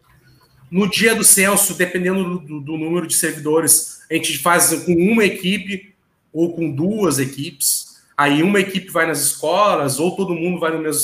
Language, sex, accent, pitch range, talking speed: Portuguese, male, Brazilian, 155-195 Hz, 175 wpm